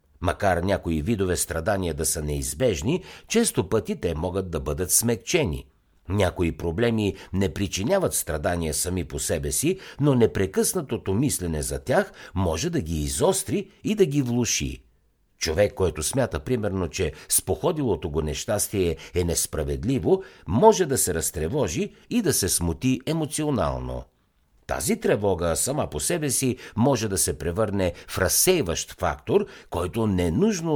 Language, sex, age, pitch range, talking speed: Bulgarian, male, 60-79, 75-120 Hz, 135 wpm